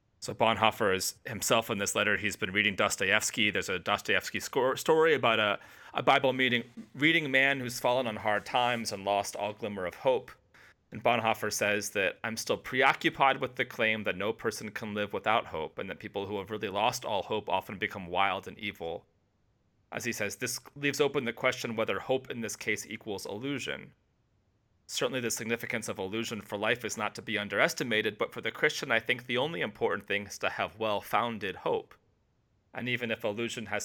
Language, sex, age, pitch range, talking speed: English, male, 30-49, 105-130 Hz, 195 wpm